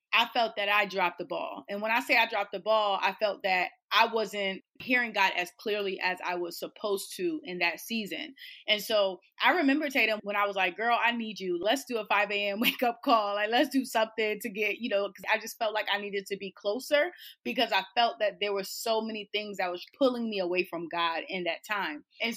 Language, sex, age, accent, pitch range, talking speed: English, female, 20-39, American, 195-250 Hz, 245 wpm